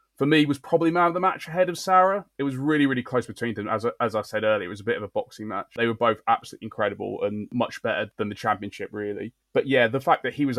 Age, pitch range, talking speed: 20-39, 110-125 Hz, 285 wpm